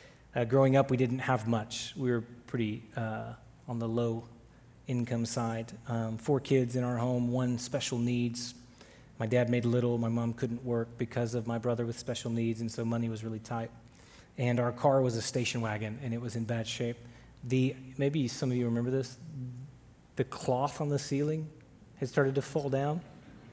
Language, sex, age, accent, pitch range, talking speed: English, male, 30-49, American, 120-145 Hz, 190 wpm